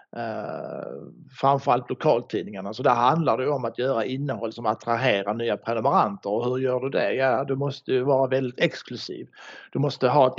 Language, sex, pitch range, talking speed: Swedish, male, 125-150 Hz, 185 wpm